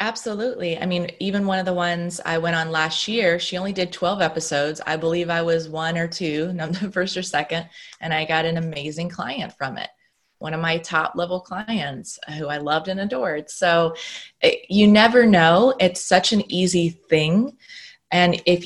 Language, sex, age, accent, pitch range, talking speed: English, female, 20-39, American, 160-190 Hz, 185 wpm